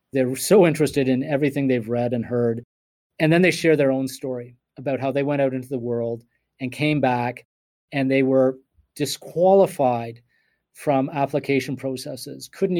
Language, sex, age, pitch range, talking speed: English, male, 40-59, 120-145 Hz, 165 wpm